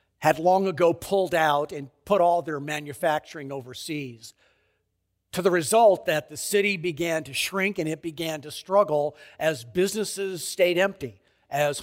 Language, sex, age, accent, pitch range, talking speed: English, male, 50-69, American, 130-215 Hz, 150 wpm